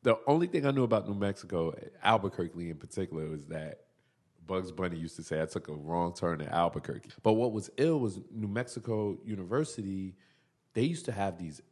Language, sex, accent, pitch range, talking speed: English, male, American, 80-105 Hz, 195 wpm